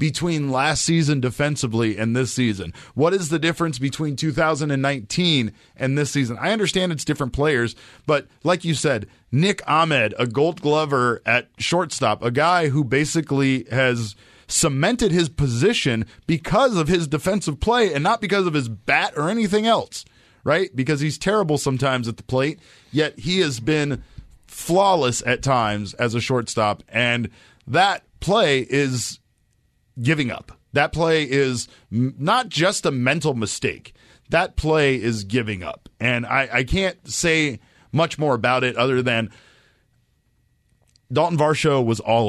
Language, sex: English, male